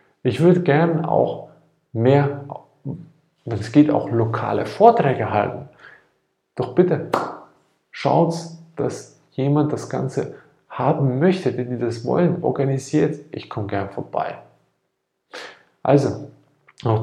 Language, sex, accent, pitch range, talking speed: German, male, German, 120-150 Hz, 110 wpm